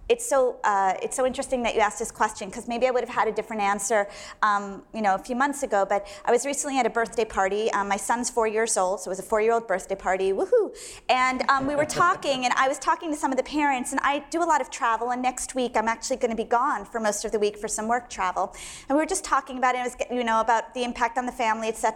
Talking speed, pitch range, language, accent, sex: 290 wpm, 205-255 Hz, English, American, female